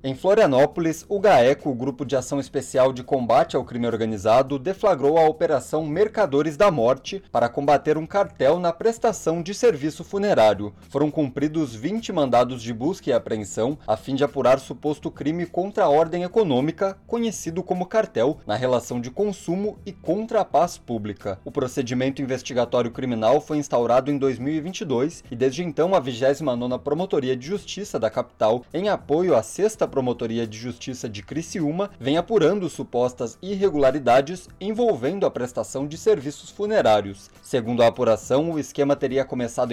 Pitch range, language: 130-185 Hz, Portuguese